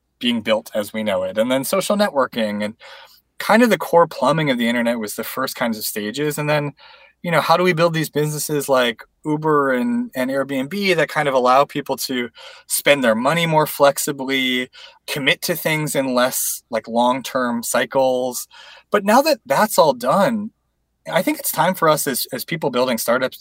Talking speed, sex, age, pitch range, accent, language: 195 wpm, male, 20-39, 115-165 Hz, American, English